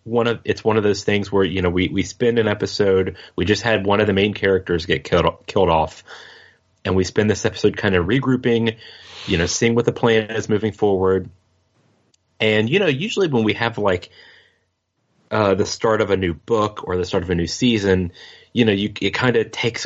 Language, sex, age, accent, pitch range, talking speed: English, male, 30-49, American, 90-115 Hz, 220 wpm